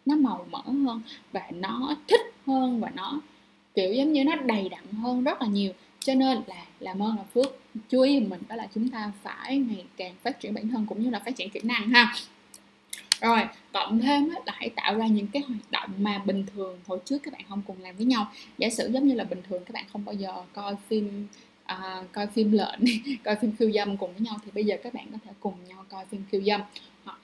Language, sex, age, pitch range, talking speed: Vietnamese, female, 10-29, 205-260 Hz, 240 wpm